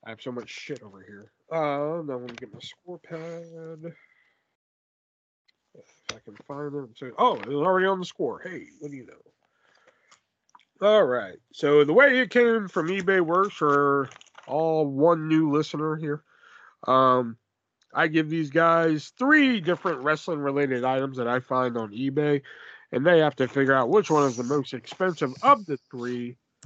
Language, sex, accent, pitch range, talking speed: English, male, American, 140-230 Hz, 175 wpm